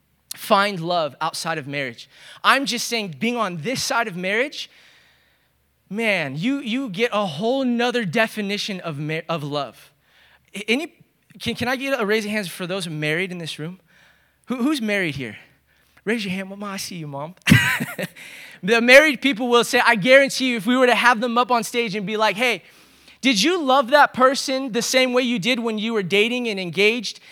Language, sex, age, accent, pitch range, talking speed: English, male, 20-39, American, 195-255 Hz, 195 wpm